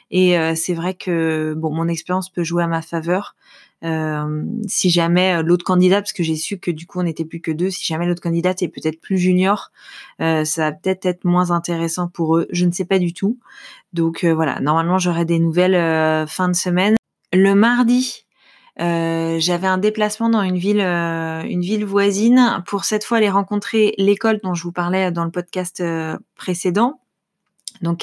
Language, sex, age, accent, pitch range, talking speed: French, female, 20-39, French, 165-195 Hz, 200 wpm